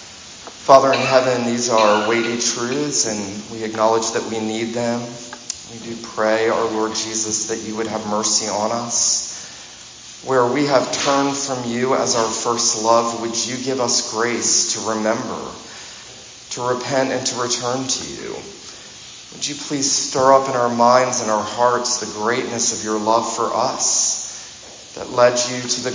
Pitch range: 110-120 Hz